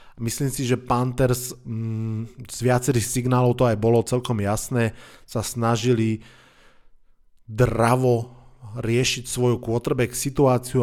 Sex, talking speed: male, 110 wpm